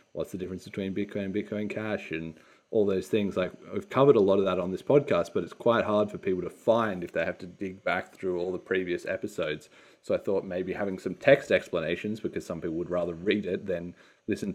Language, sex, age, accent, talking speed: English, male, 30-49, Australian, 235 wpm